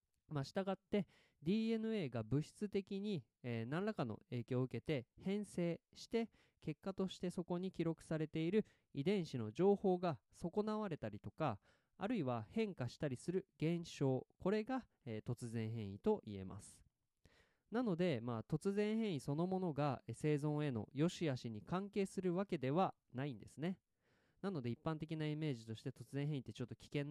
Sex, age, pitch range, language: male, 20-39, 125-190 Hz, Japanese